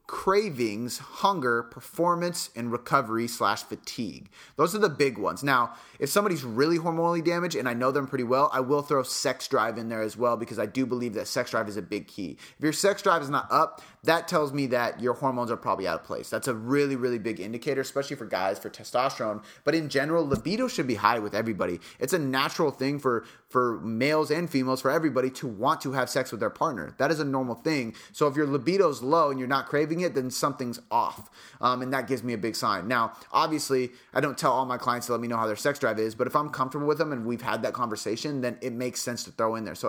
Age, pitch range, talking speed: 30-49, 115-145 Hz, 250 wpm